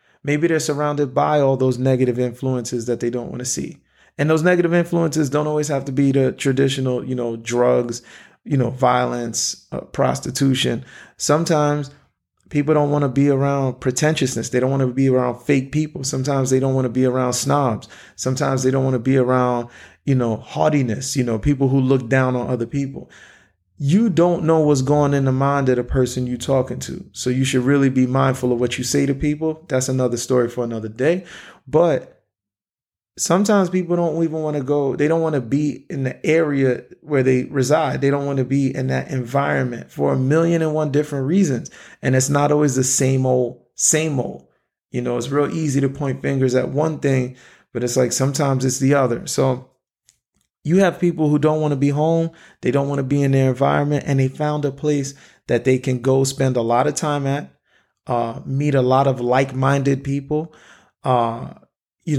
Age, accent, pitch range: 30-49, American, 130-145 Hz